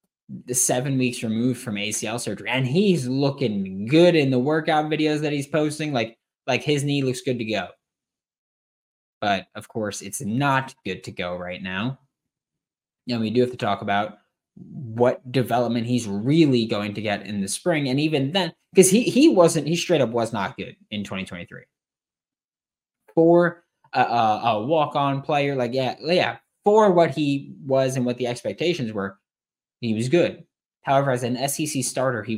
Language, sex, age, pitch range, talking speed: English, male, 20-39, 110-140 Hz, 180 wpm